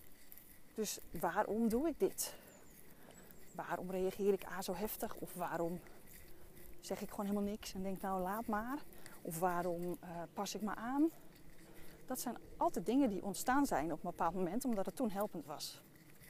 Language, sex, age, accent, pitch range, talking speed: Dutch, female, 30-49, Dutch, 165-215 Hz, 170 wpm